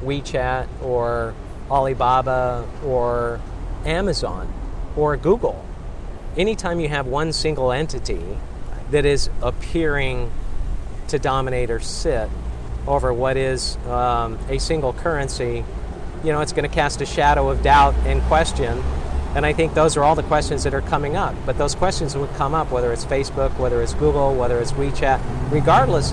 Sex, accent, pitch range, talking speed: male, American, 115-140 Hz, 150 wpm